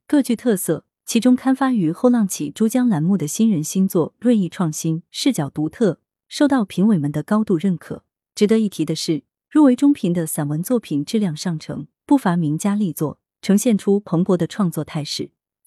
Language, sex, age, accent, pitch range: Chinese, female, 30-49, native, 155-220 Hz